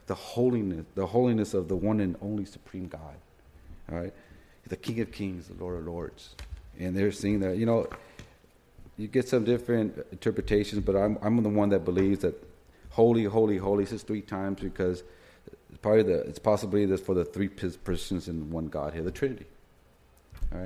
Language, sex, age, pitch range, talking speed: English, male, 40-59, 85-105 Hz, 185 wpm